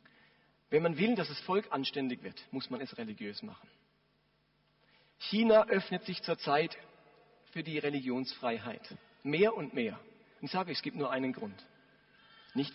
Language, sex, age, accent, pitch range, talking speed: German, male, 40-59, German, 155-225 Hz, 155 wpm